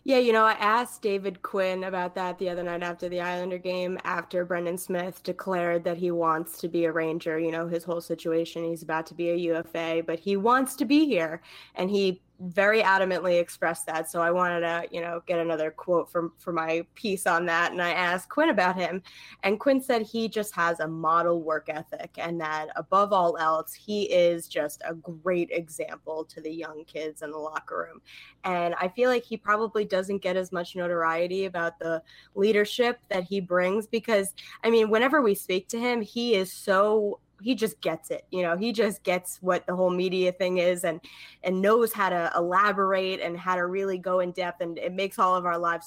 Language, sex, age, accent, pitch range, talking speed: English, female, 20-39, American, 170-195 Hz, 215 wpm